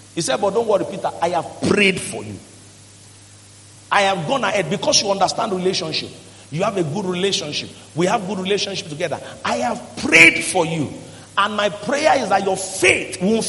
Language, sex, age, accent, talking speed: English, male, 50-69, Nigerian, 185 wpm